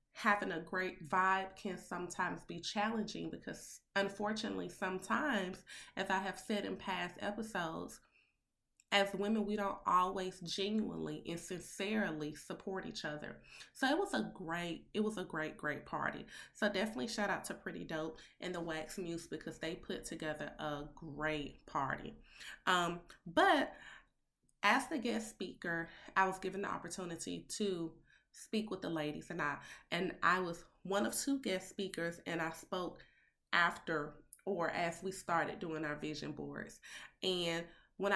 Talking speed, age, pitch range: 155 wpm, 20-39, 160-200 Hz